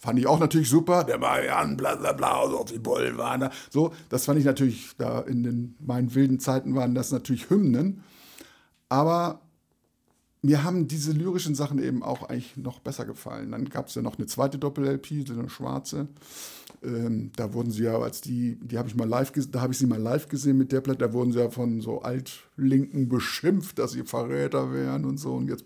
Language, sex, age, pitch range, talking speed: German, male, 50-69, 120-140 Hz, 210 wpm